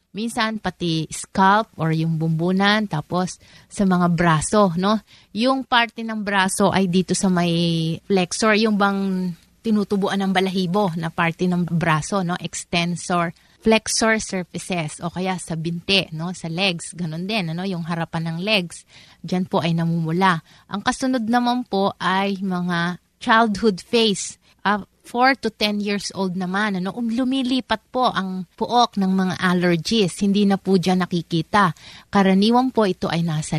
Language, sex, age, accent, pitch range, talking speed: Filipino, female, 20-39, native, 170-205 Hz, 155 wpm